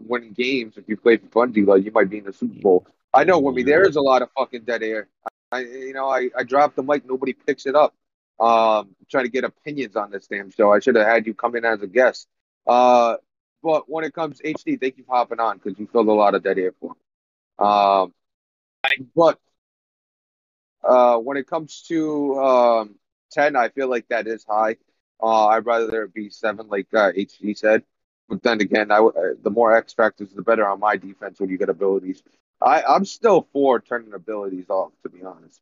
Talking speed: 225 wpm